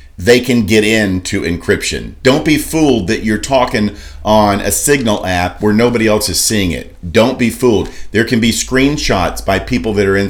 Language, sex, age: English, male, 40-59